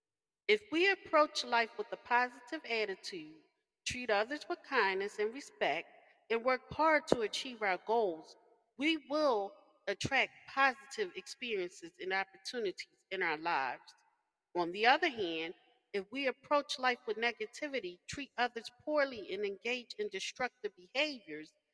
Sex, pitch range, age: female, 205-315 Hz, 40-59